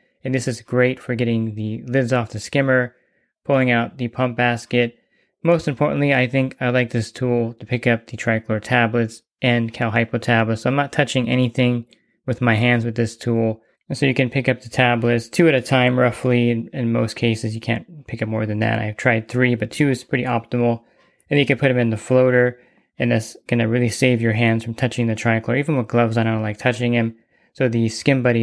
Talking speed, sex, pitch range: 230 wpm, male, 115-130 Hz